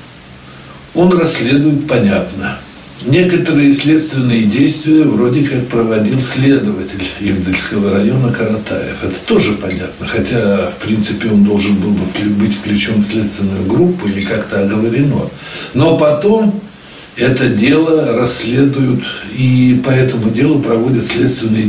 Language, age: Russian, 60-79